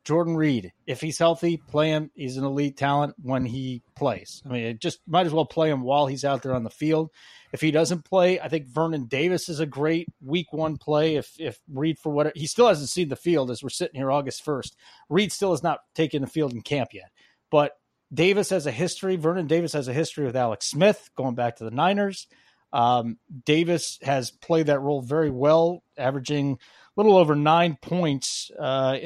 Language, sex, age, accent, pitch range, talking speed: English, male, 30-49, American, 135-165 Hz, 215 wpm